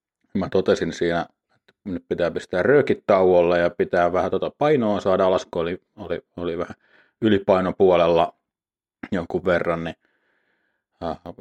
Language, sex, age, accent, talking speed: Finnish, male, 30-49, native, 130 wpm